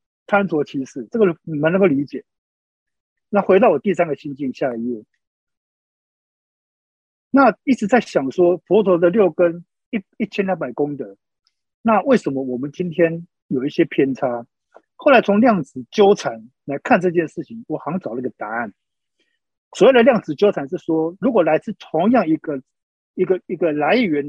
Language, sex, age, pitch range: Chinese, male, 50-69, 145-205 Hz